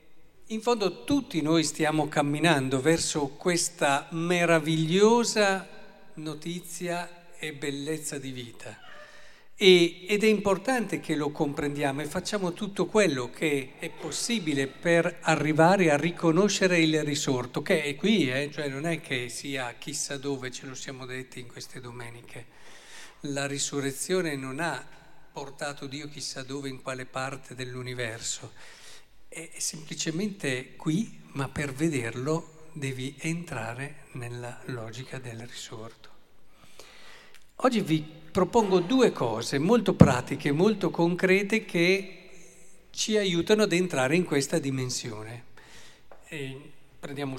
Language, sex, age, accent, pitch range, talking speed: Italian, male, 50-69, native, 135-175 Hz, 115 wpm